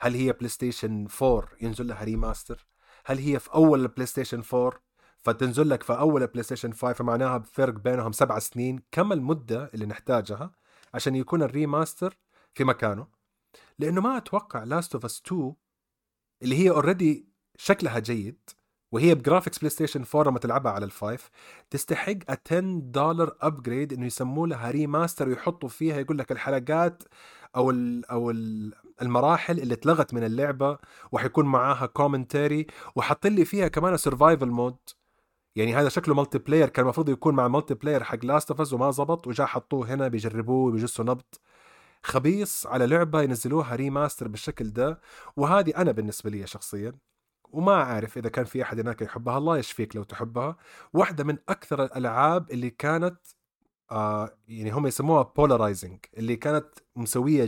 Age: 30-49